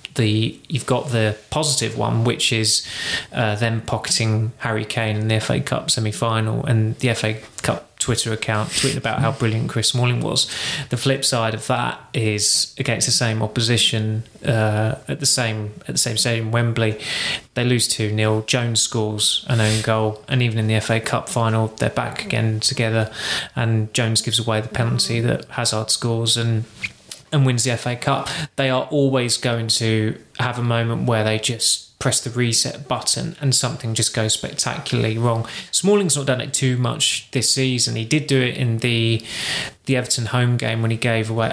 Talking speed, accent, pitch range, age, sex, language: 185 wpm, British, 110-130 Hz, 20-39, male, English